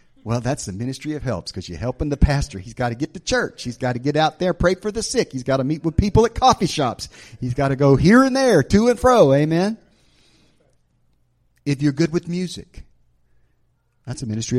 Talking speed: 225 wpm